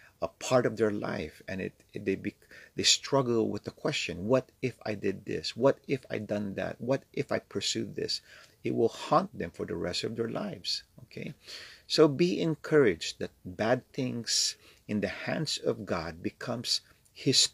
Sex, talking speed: male, 185 wpm